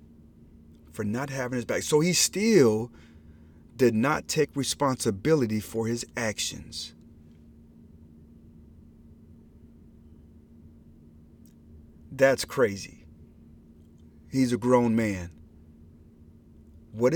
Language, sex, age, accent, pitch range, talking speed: English, male, 40-59, American, 75-120 Hz, 75 wpm